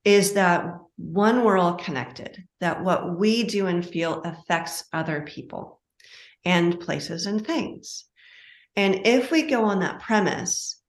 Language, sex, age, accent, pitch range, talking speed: English, female, 40-59, American, 165-205 Hz, 145 wpm